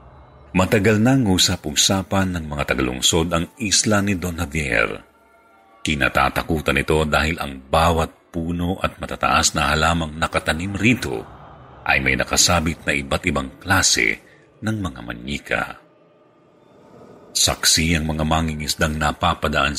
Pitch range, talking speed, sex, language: 75-90 Hz, 115 wpm, male, Filipino